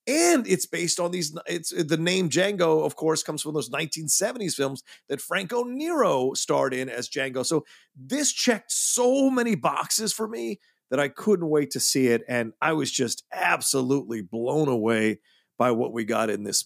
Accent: American